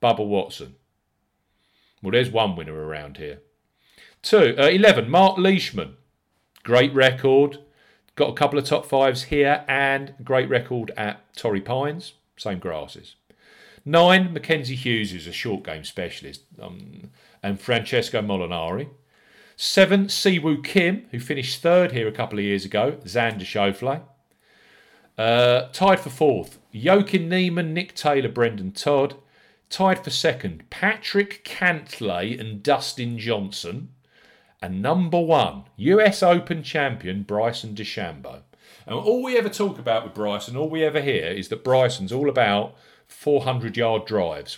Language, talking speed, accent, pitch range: English, 135 wpm, British, 105-150 Hz